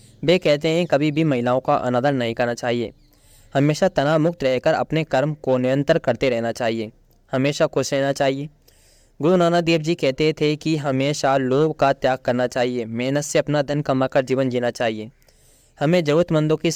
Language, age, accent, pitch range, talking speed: Hindi, 20-39, native, 125-150 Hz, 180 wpm